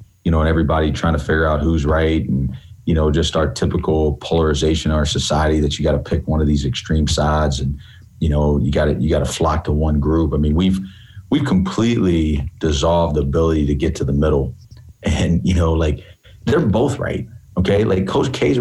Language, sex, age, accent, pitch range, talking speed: English, male, 40-59, American, 80-100 Hz, 215 wpm